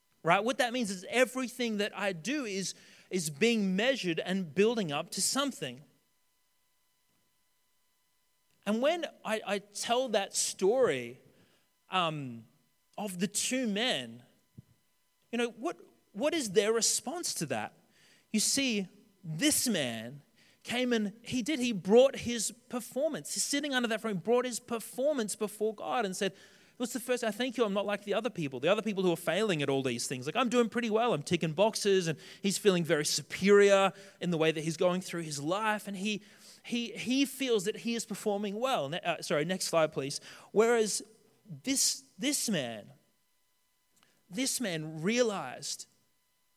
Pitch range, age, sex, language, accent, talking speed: 175-235 Hz, 30-49, male, English, Australian, 170 wpm